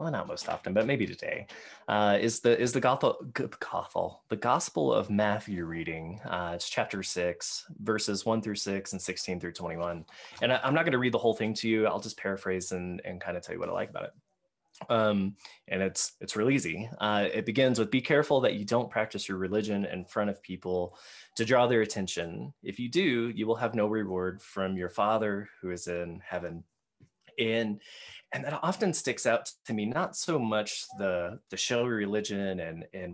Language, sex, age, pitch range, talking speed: English, male, 20-39, 95-125 Hz, 210 wpm